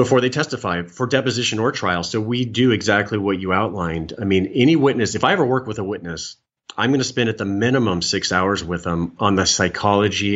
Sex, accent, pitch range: male, American, 100-125 Hz